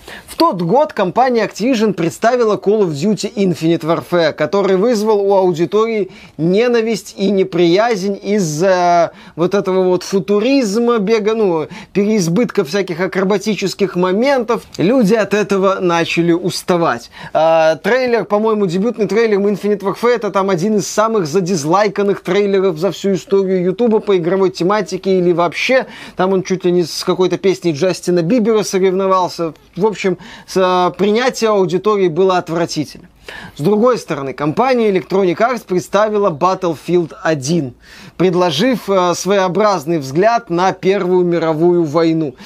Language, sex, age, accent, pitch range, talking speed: Russian, male, 20-39, native, 175-210 Hz, 125 wpm